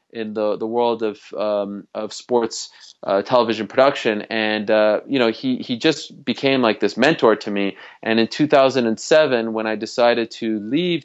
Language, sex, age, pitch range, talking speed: English, male, 20-39, 110-130 Hz, 175 wpm